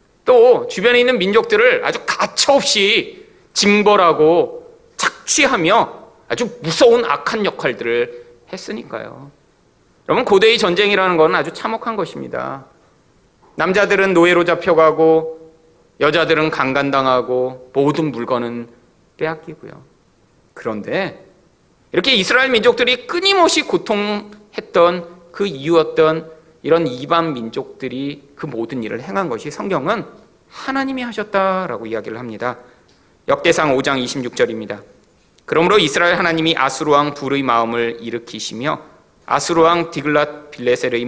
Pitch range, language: 125-195 Hz, Korean